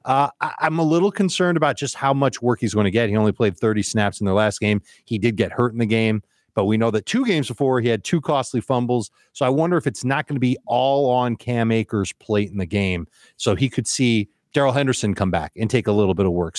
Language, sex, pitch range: English, male, 105-145 Hz